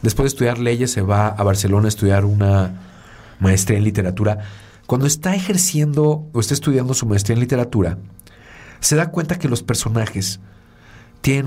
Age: 40-59